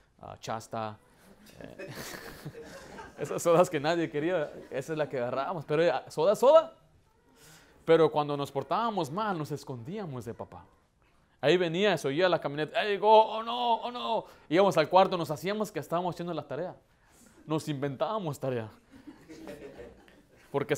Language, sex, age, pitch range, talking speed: Spanish, male, 30-49, 145-185 Hz, 150 wpm